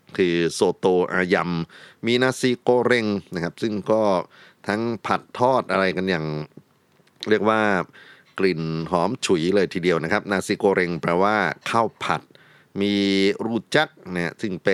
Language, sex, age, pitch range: Thai, male, 30-49, 80-105 Hz